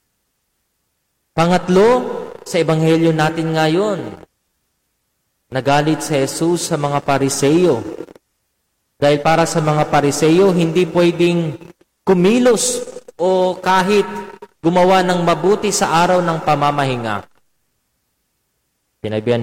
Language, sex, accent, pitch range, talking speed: Filipino, male, native, 145-185 Hz, 90 wpm